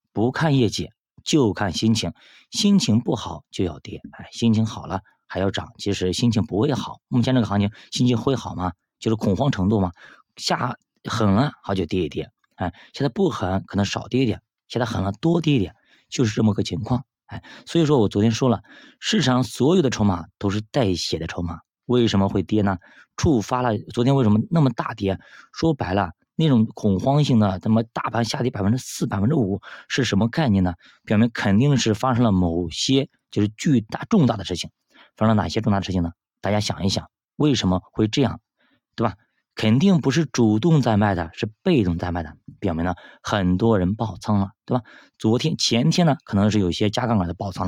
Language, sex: Chinese, male